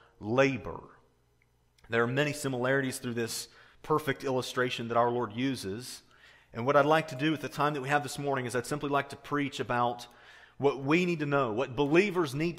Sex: male